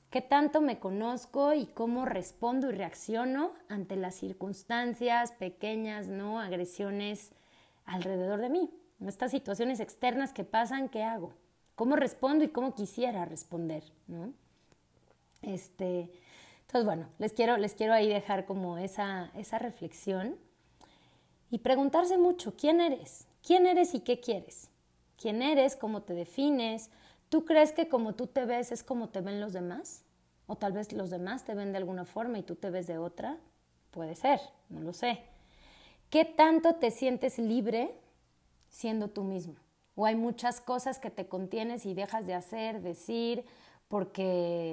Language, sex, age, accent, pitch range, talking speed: Spanish, female, 30-49, Mexican, 185-245 Hz, 150 wpm